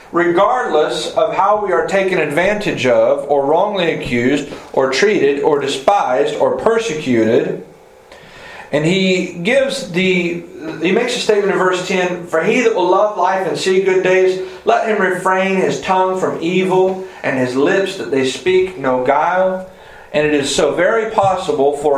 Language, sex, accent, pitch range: English, male, American, 135-190 Hz